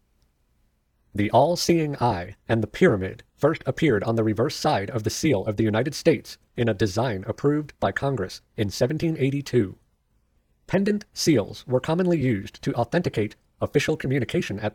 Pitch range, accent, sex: 110-145 Hz, American, male